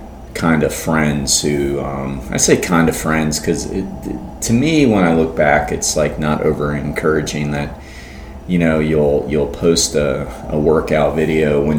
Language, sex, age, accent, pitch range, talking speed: English, male, 30-49, American, 70-85 Hz, 175 wpm